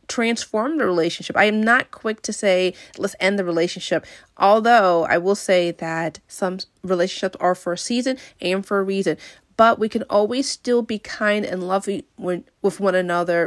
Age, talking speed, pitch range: 30-49, 180 wpm, 175-195 Hz